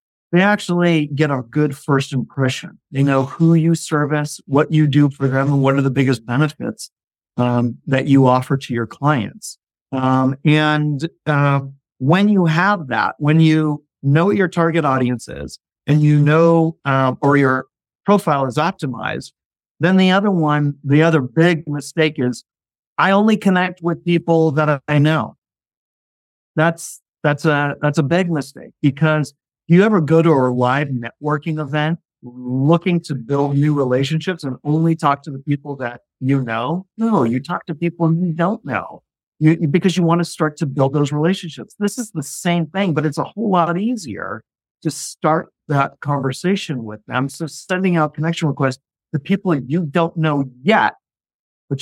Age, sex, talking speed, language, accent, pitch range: 40-59, male, 170 wpm, English, American, 135-165 Hz